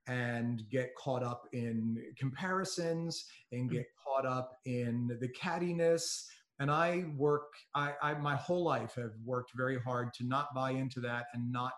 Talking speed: 165 wpm